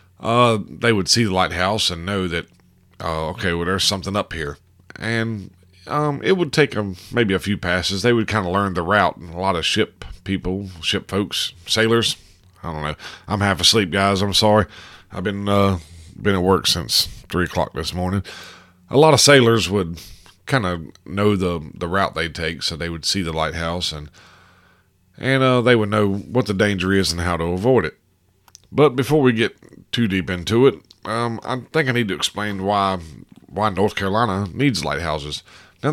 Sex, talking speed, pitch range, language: male, 200 wpm, 90-110 Hz, English